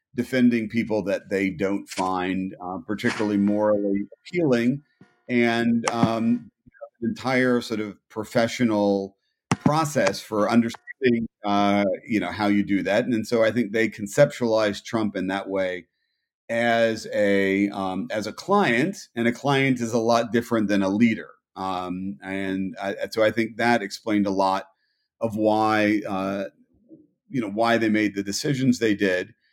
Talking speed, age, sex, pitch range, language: 150 wpm, 40-59, male, 100-120 Hz, English